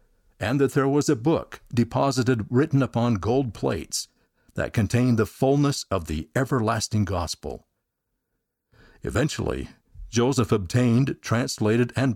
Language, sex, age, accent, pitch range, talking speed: English, male, 60-79, American, 100-130 Hz, 120 wpm